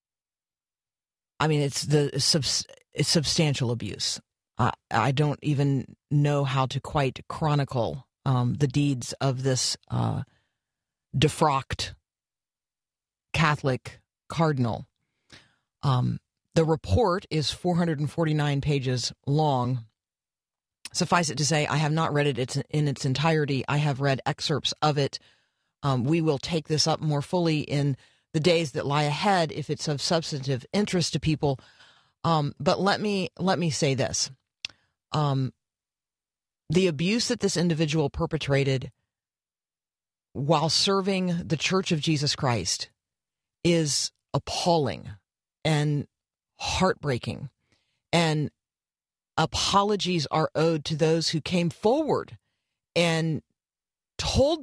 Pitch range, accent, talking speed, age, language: 130-160 Hz, American, 120 wpm, 40-59, English